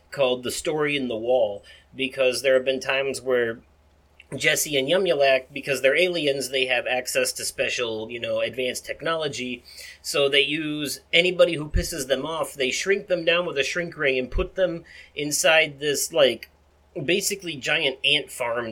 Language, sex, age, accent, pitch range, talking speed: English, male, 30-49, American, 130-160 Hz, 170 wpm